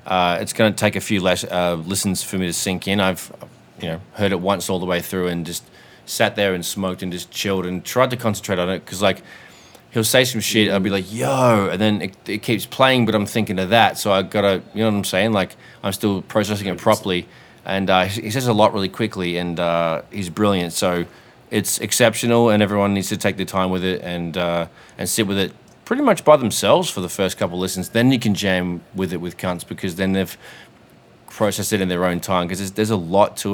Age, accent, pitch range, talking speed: 20-39, Australian, 90-110 Hz, 250 wpm